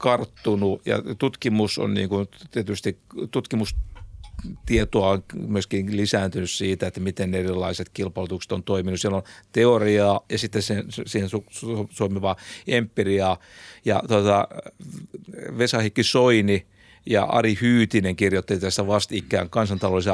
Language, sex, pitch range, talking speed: Finnish, male, 95-115 Hz, 120 wpm